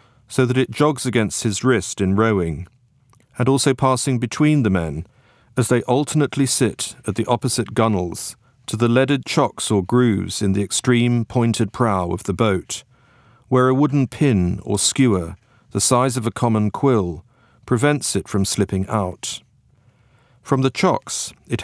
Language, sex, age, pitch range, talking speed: English, male, 40-59, 105-130 Hz, 160 wpm